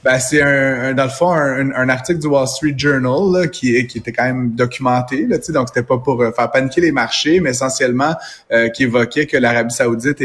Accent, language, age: Canadian, French, 30-49